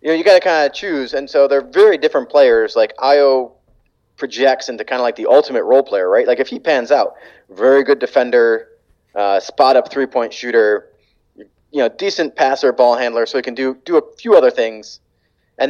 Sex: male